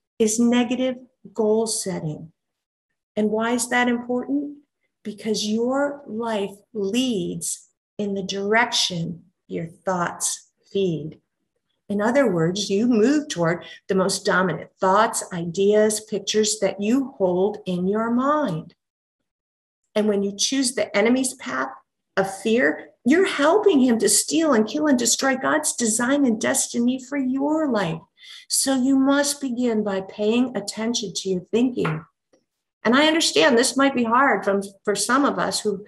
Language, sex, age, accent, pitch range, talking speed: English, female, 50-69, American, 195-255 Hz, 140 wpm